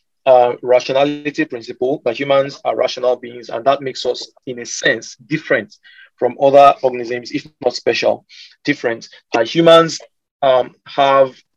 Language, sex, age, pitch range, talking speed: English, male, 40-59, 125-155 Hz, 140 wpm